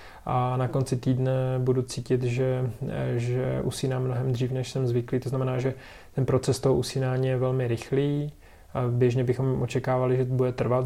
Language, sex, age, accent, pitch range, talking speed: Czech, male, 20-39, native, 125-130 Hz, 170 wpm